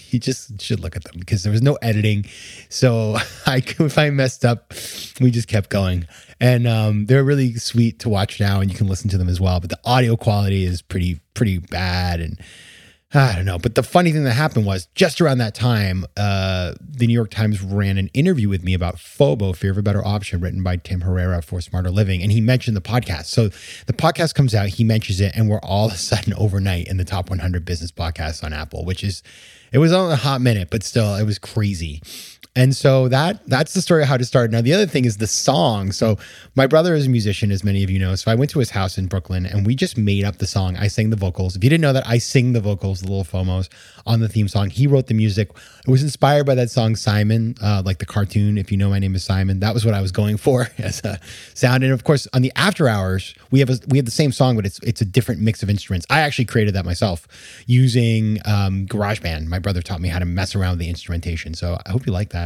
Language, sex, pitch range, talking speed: English, male, 95-125 Hz, 255 wpm